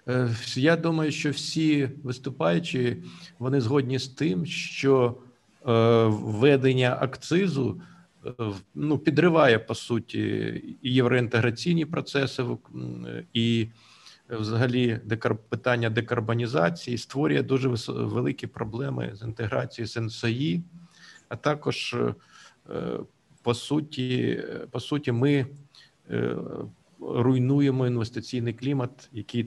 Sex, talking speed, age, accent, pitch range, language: male, 80 wpm, 50-69, native, 115-140 Hz, Ukrainian